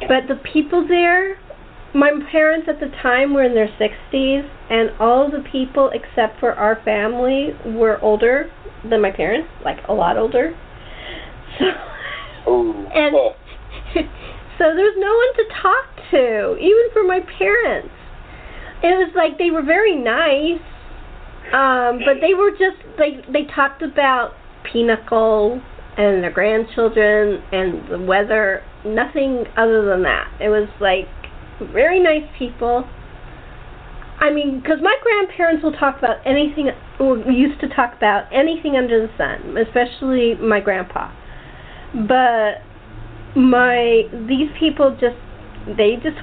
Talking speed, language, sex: 140 wpm, English, female